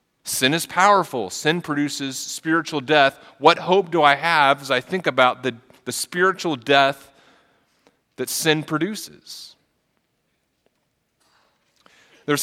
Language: English